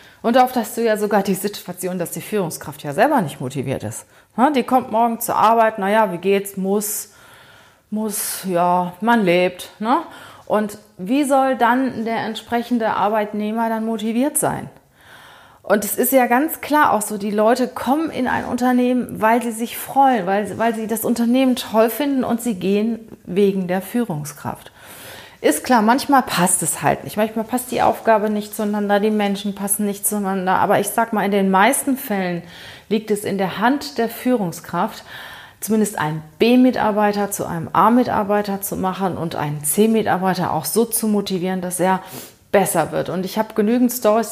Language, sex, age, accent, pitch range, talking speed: German, female, 30-49, German, 190-235 Hz, 170 wpm